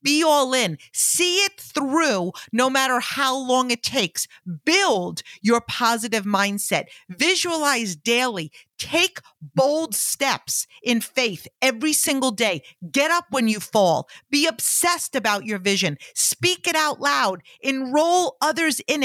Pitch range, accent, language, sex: 205-290 Hz, American, English, female